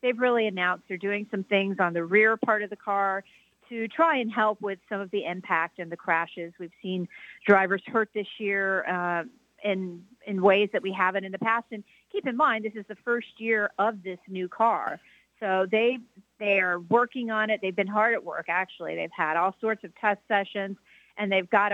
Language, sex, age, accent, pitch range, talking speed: English, female, 40-59, American, 185-220 Hz, 215 wpm